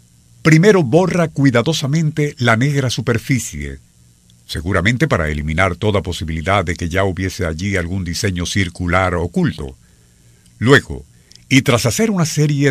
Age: 50-69